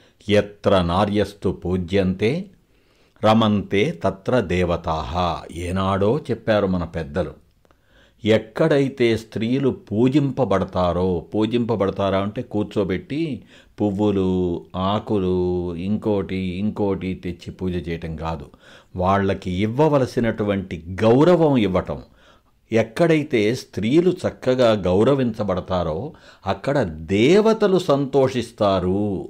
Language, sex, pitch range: Telugu, male, 95-125 Hz